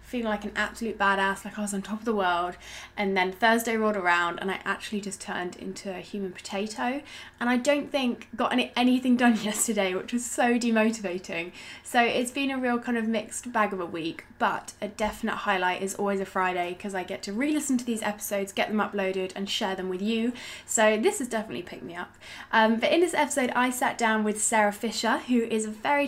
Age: 10-29